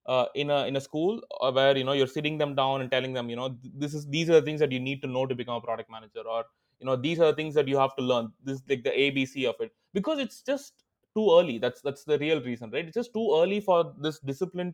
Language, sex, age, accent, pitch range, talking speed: English, male, 20-39, Indian, 130-195 Hz, 295 wpm